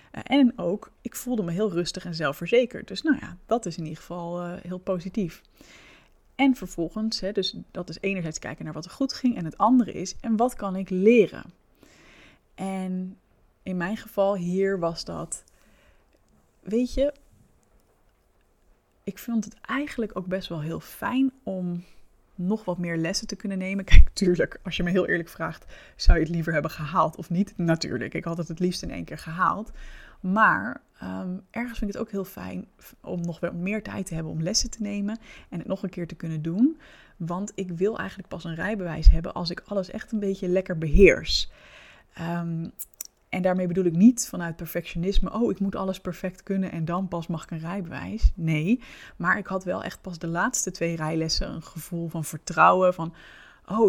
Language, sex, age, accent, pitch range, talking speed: Dutch, female, 20-39, Dutch, 170-205 Hz, 190 wpm